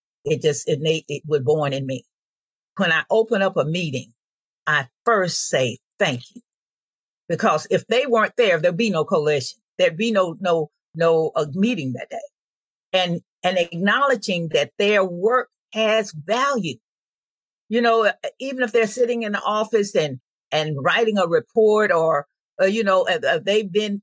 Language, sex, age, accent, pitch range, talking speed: English, female, 50-69, American, 175-235 Hz, 170 wpm